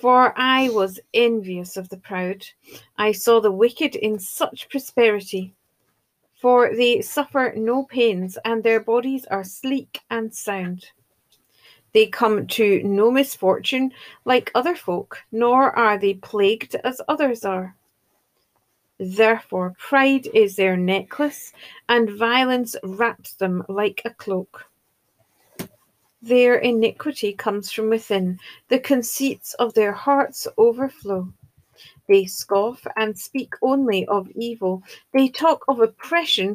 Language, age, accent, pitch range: English, 40-59, British, 200-265 Hz